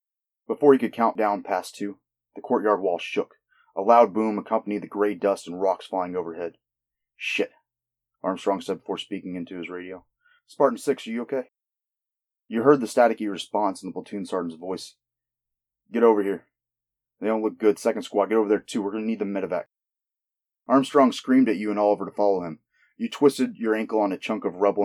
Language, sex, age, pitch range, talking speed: English, male, 30-49, 90-115 Hz, 200 wpm